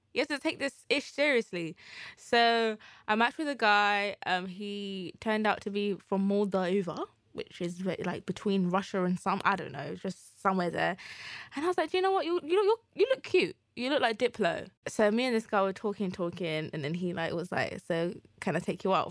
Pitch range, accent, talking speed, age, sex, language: 185-235 Hz, British, 225 wpm, 20-39, female, English